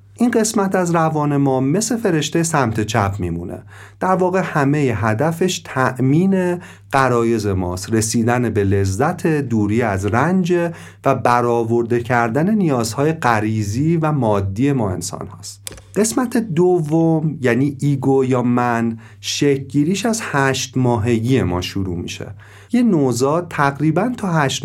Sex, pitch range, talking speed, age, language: male, 110-155 Hz, 125 wpm, 40-59, Persian